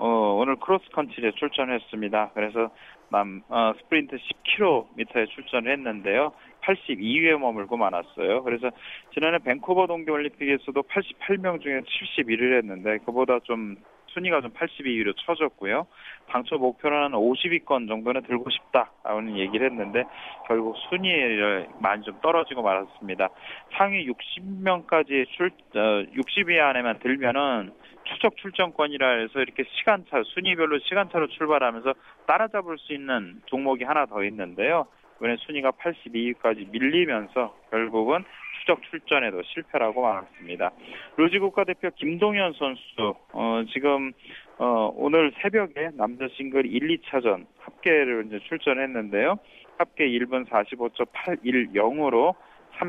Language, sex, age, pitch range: Korean, male, 20-39, 115-165 Hz